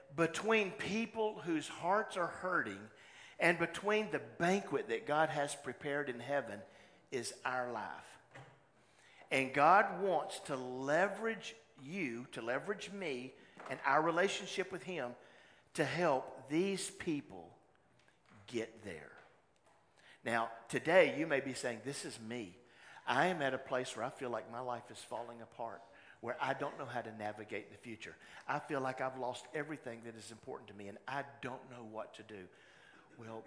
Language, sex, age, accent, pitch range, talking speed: English, male, 50-69, American, 115-155 Hz, 160 wpm